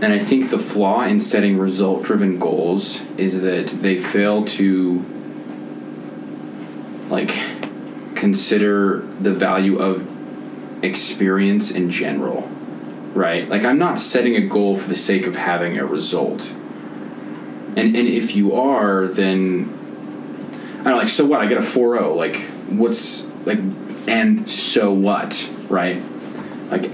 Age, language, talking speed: 20-39, English, 135 wpm